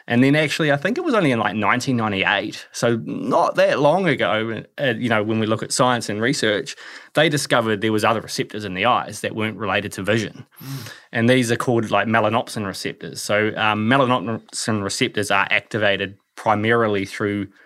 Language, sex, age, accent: English, male, 20-39, Australian